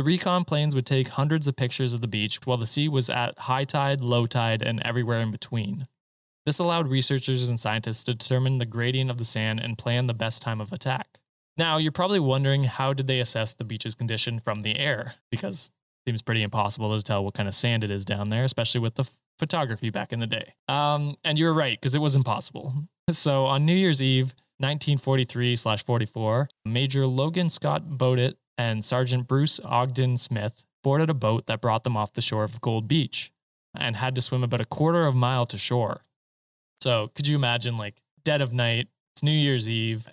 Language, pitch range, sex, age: English, 115-140 Hz, male, 20-39